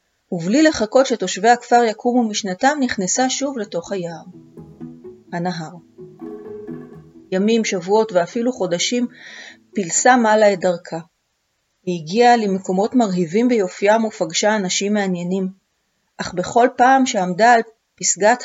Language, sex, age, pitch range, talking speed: Hebrew, female, 30-49, 175-225 Hz, 105 wpm